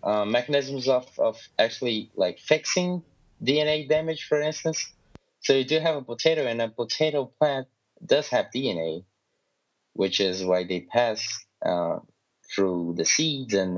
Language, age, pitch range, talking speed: English, 20-39, 100-125 Hz, 150 wpm